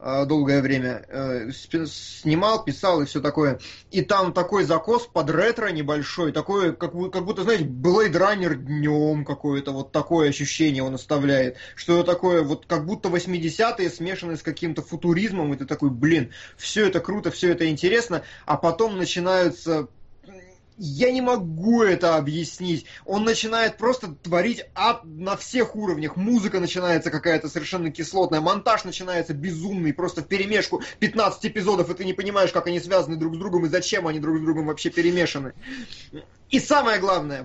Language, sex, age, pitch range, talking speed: Russian, male, 20-39, 160-210 Hz, 155 wpm